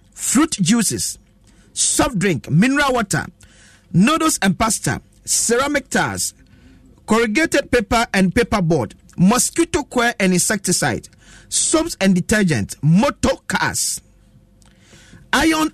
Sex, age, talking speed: male, 50-69, 95 wpm